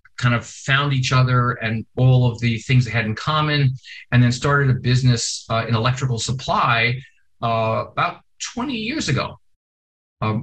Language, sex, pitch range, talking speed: English, male, 115-135 Hz, 165 wpm